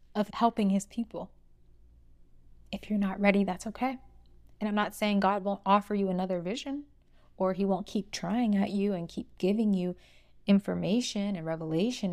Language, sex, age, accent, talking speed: English, female, 20-39, American, 170 wpm